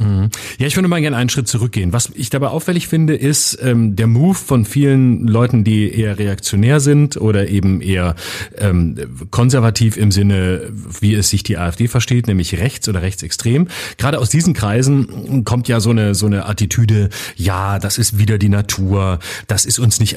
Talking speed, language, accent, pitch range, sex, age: 185 wpm, German, German, 105-135 Hz, male, 40-59